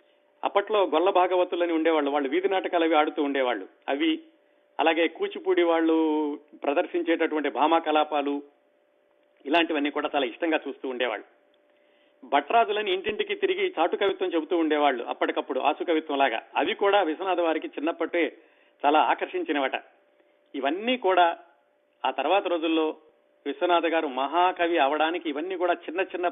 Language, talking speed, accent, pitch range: Telugu, 120 wpm, native, 145-175 Hz